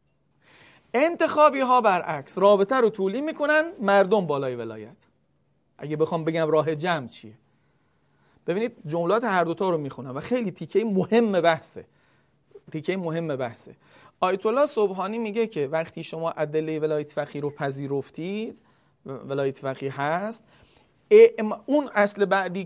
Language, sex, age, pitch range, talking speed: Persian, male, 40-59, 150-210 Hz, 120 wpm